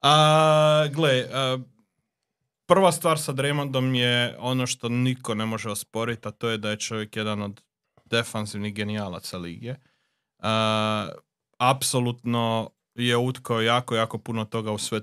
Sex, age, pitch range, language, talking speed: male, 30-49, 105-130 Hz, Croatian, 130 wpm